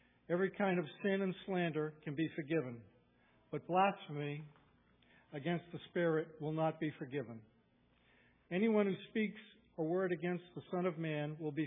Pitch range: 145-175 Hz